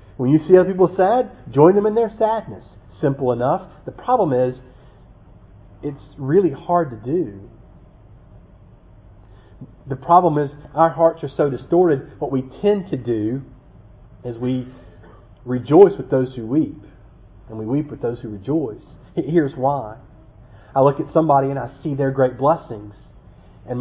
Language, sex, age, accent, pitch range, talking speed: English, male, 40-59, American, 115-165 Hz, 155 wpm